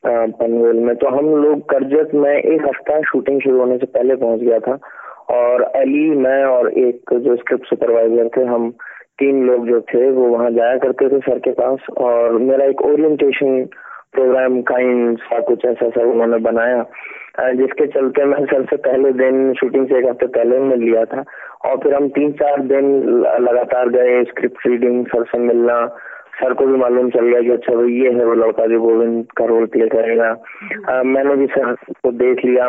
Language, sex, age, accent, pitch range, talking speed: Hindi, male, 20-39, native, 120-140 Hz, 165 wpm